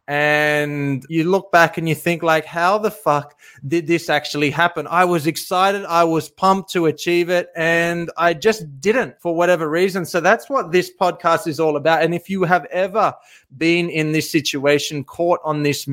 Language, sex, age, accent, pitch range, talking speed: English, male, 20-39, Australian, 145-170 Hz, 190 wpm